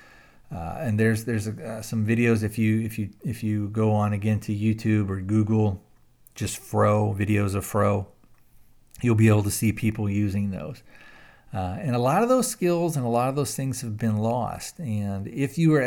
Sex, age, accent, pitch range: male, 40-59, American, 105-125 Hz